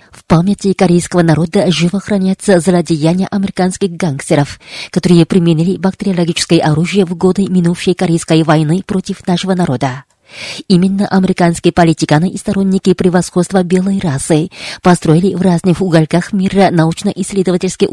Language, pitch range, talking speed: Russian, 165-195 Hz, 115 wpm